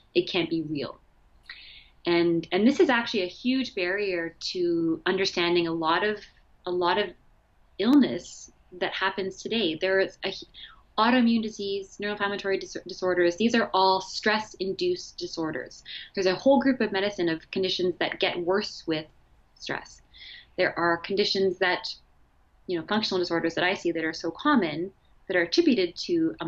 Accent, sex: American, female